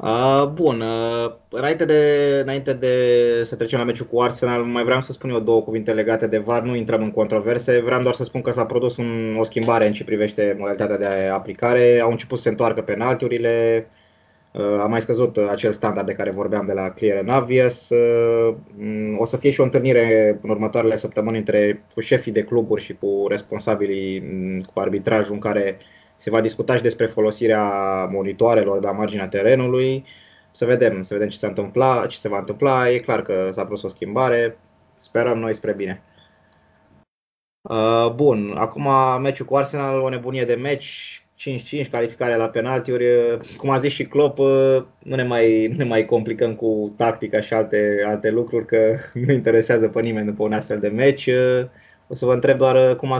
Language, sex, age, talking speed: Romanian, male, 20-39, 180 wpm